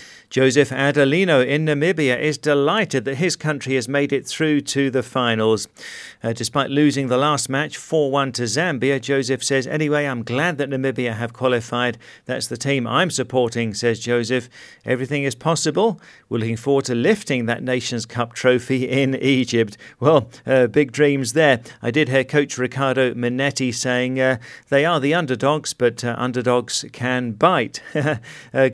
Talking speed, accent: 165 wpm, British